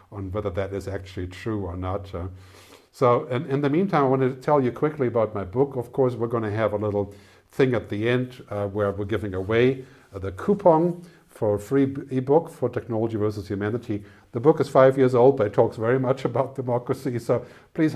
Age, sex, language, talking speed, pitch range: 50-69, male, English, 210 wpm, 105-130 Hz